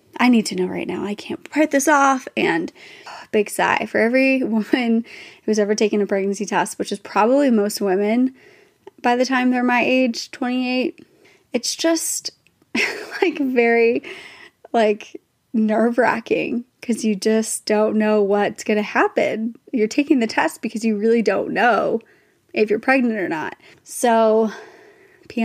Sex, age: female, 20-39